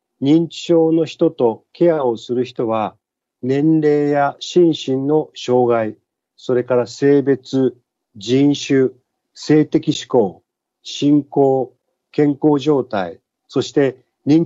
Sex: male